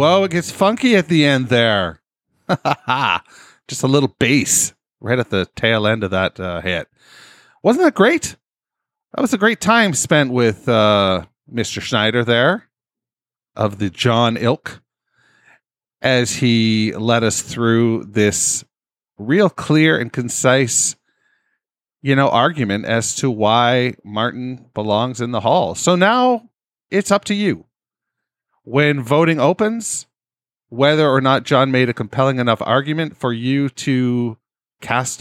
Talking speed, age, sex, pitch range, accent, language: 140 wpm, 40-59, male, 115-150 Hz, American, English